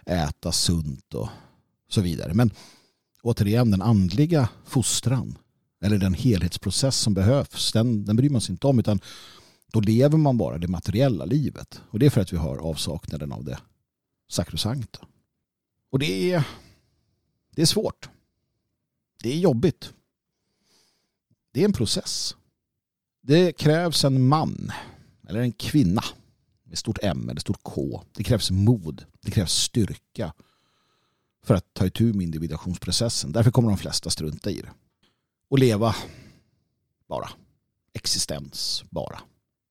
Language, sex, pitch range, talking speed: Swedish, male, 95-130 Hz, 140 wpm